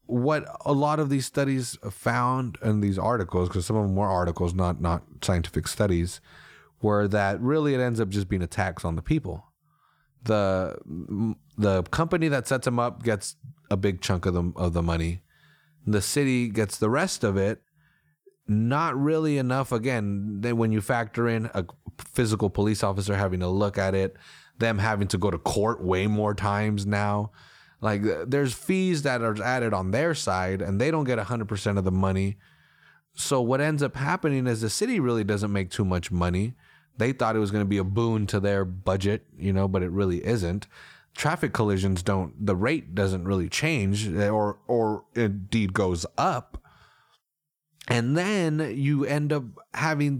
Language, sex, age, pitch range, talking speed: English, male, 30-49, 100-135 Hz, 185 wpm